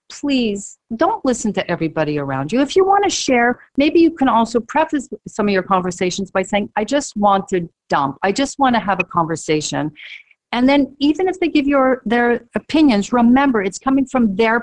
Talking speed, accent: 190 wpm, American